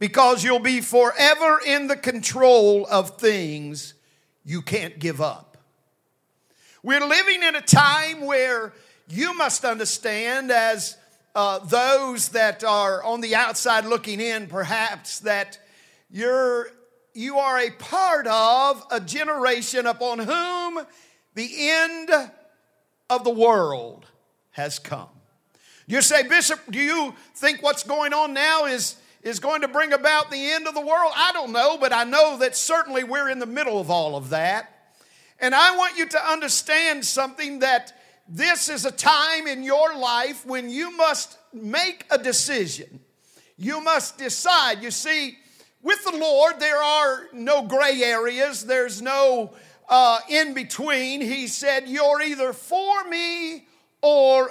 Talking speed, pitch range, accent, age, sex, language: 145 wpm, 225-300 Hz, American, 50-69, male, English